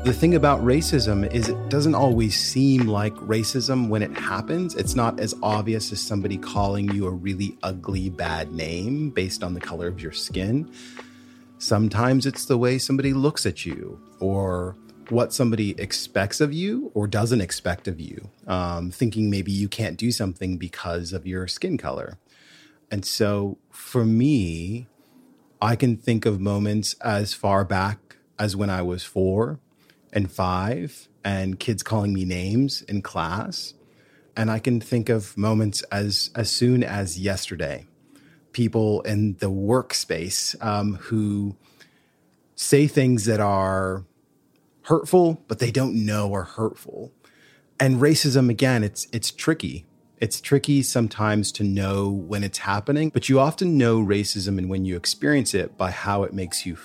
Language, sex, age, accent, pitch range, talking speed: English, male, 30-49, American, 95-125 Hz, 155 wpm